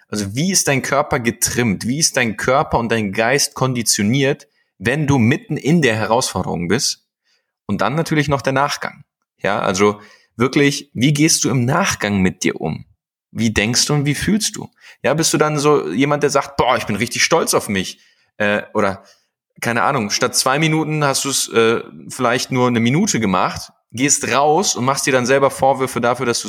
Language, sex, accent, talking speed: German, male, German, 195 wpm